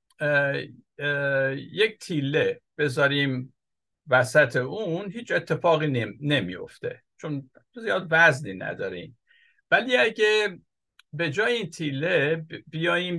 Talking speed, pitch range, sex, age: 100 wpm, 135-180 Hz, male, 60-79